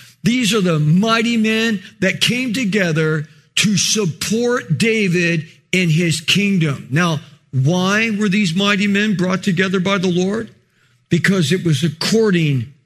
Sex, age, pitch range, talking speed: male, 50-69, 155-210 Hz, 135 wpm